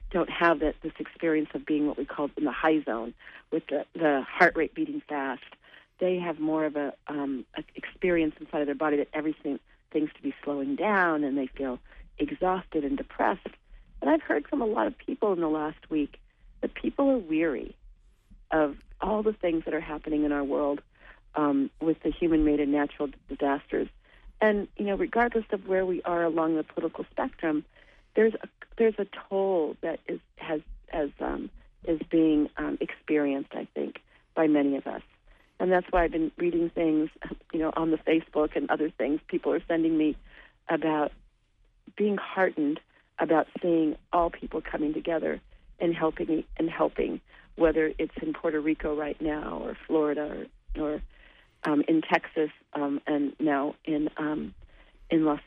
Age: 40-59